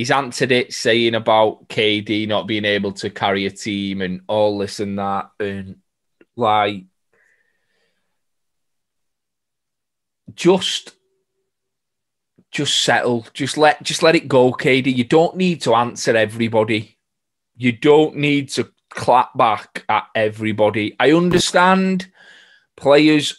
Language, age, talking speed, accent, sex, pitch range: English, 20-39, 120 wpm, British, male, 105-150 Hz